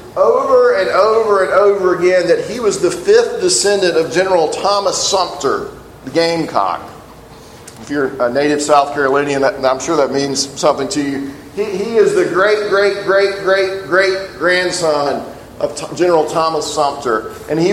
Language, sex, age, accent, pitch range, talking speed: English, male, 40-59, American, 145-200 Hz, 155 wpm